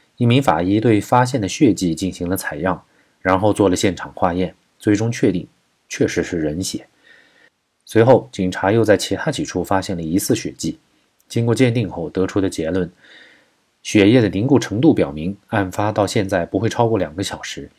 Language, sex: Chinese, male